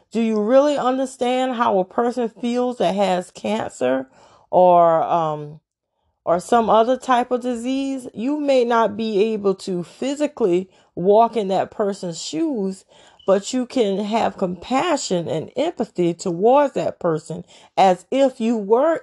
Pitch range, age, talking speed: 190-250 Hz, 40-59, 140 wpm